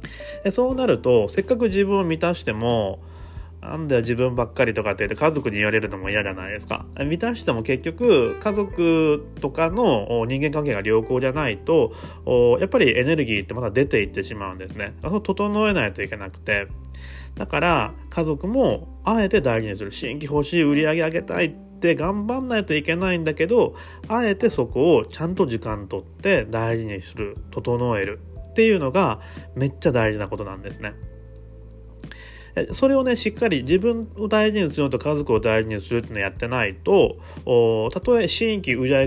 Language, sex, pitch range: Japanese, male, 105-175 Hz